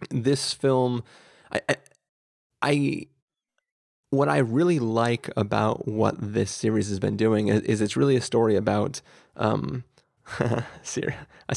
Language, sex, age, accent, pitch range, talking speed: English, male, 20-39, American, 105-120 Hz, 130 wpm